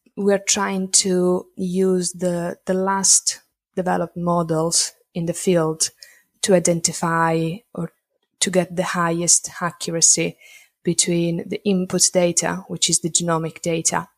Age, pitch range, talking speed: 20-39, 160-175 Hz, 125 wpm